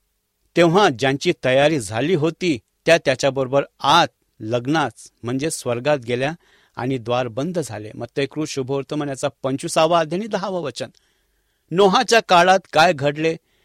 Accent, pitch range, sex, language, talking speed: Indian, 130-170 Hz, male, English, 120 wpm